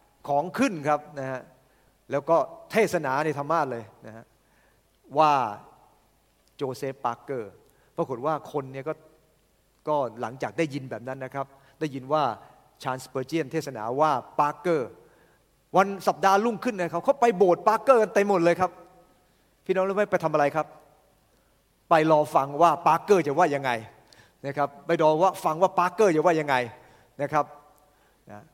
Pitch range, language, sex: 130-170 Hz, English, male